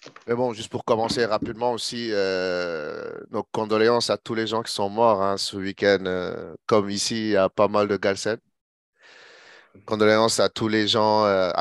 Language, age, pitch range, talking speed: English, 30-49, 95-120 Hz, 175 wpm